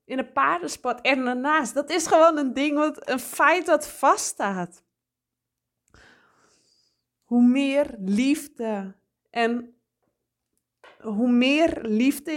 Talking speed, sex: 105 wpm, female